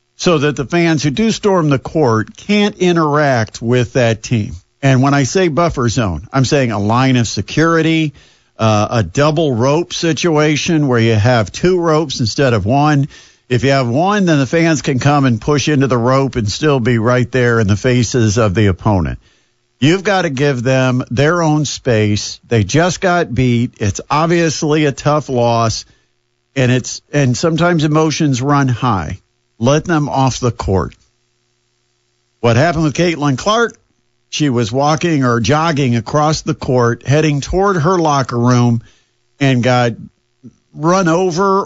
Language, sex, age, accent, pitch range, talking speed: English, male, 50-69, American, 120-155 Hz, 165 wpm